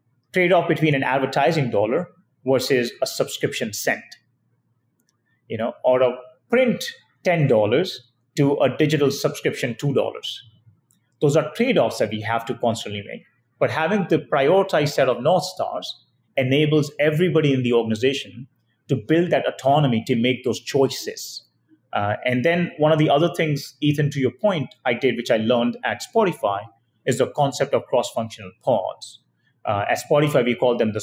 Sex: male